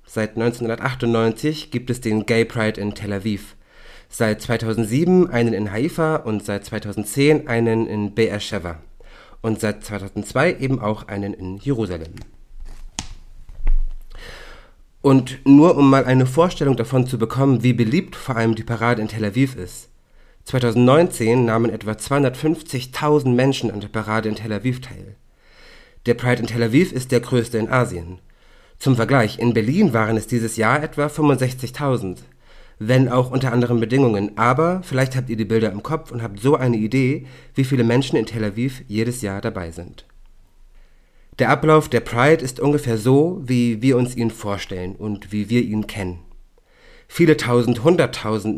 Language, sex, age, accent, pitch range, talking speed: German, male, 40-59, German, 105-130 Hz, 160 wpm